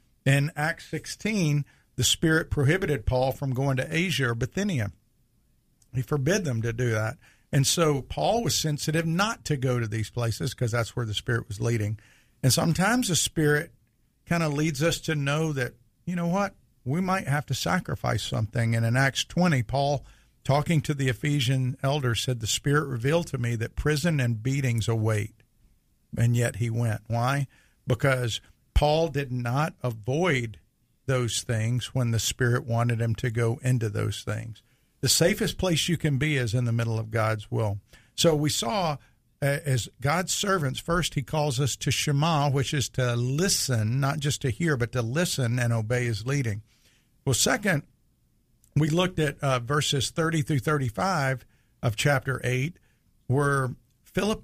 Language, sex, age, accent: English, male, 50-69, American